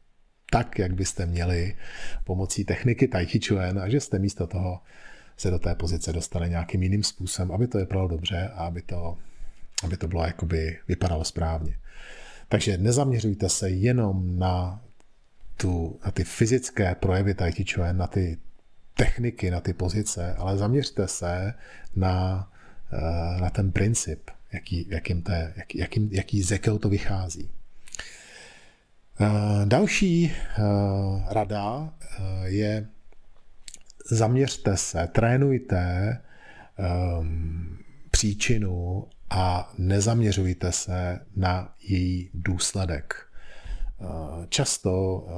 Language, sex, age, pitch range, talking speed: Czech, male, 40-59, 90-105 Hz, 110 wpm